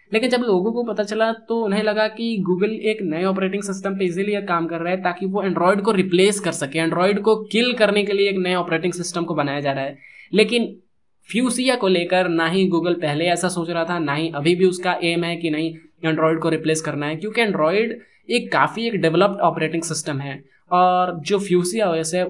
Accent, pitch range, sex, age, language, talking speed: native, 165-210 Hz, male, 20-39, Hindi, 220 wpm